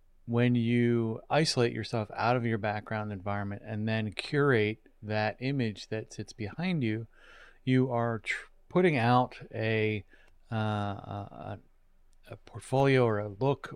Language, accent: English, American